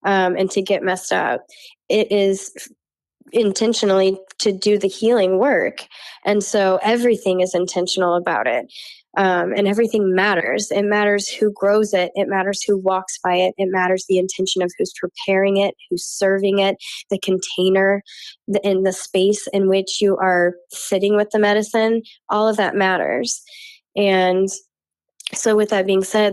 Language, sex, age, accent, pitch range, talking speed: English, female, 10-29, American, 185-210 Hz, 160 wpm